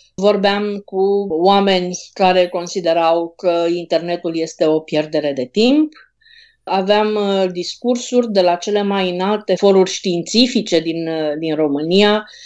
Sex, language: female, Romanian